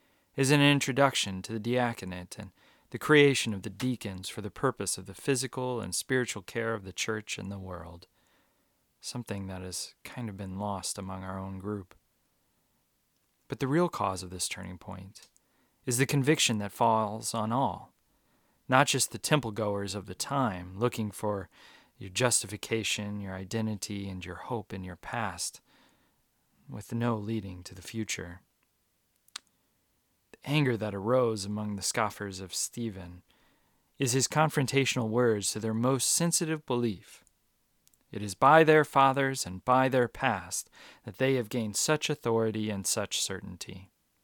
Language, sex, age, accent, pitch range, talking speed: English, male, 30-49, American, 100-130 Hz, 155 wpm